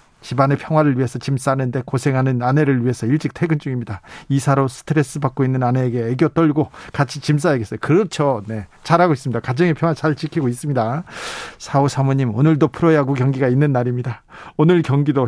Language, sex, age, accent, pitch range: Korean, male, 40-59, native, 135-175 Hz